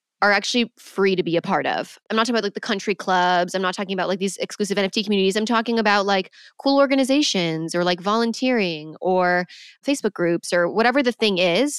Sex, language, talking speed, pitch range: female, English, 215 wpm, 190-245 Hz